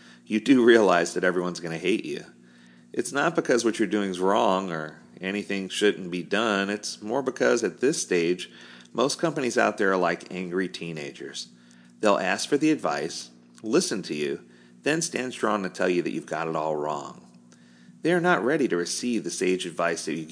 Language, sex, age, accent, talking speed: English, male, 40-59, American, 200 wpm